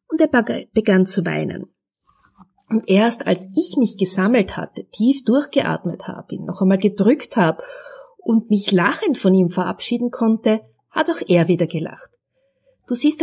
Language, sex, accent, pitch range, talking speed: German, female, Austrian, 180-250 Hz, 155 wpm